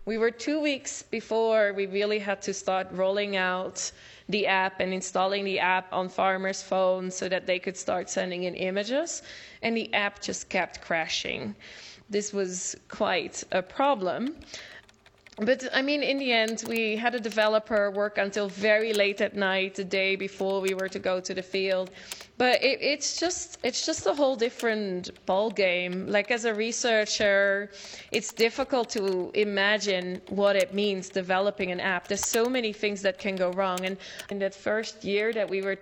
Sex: female